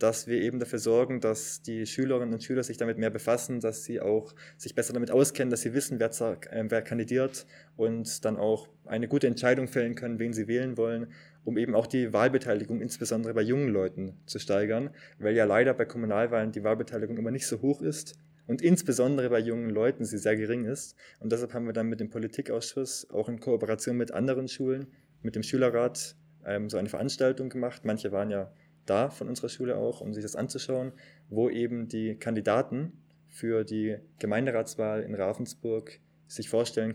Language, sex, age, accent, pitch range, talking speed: German, male, 20-39, German, 110-135 Hz, 185 wpm